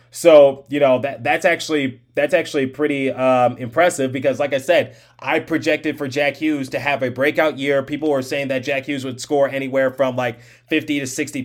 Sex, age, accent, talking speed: male, 30-49, American, 205 wpm